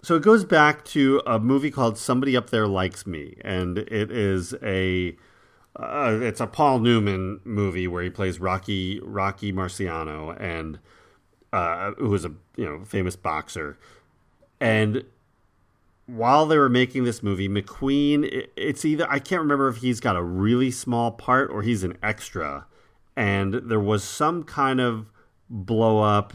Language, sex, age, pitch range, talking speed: English, male, 40-59, 90-115 Hz, 160 wpm